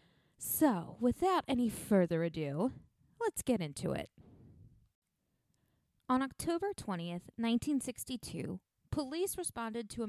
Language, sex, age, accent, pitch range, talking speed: English, female, 20-39, American, 190-260 Hz, 100 wpm